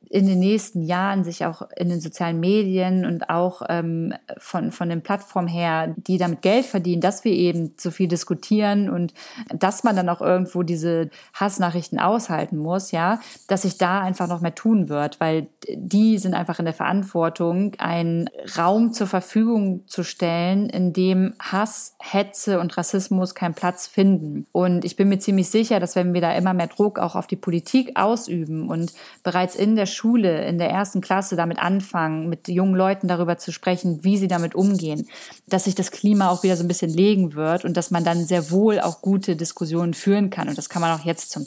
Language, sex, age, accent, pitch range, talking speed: German, female, 30-49, German, 170-195 Hz, 200 wpm